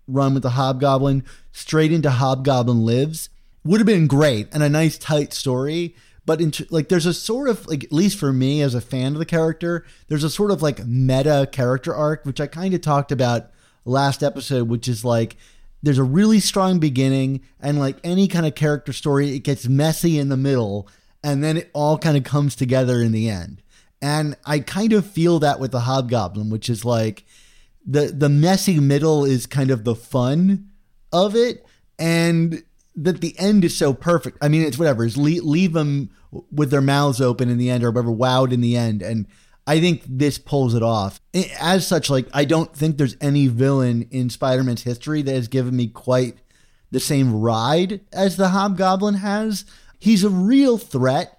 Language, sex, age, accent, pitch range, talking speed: English, male, 30-49, American, 130-165 Hz, 195 wpm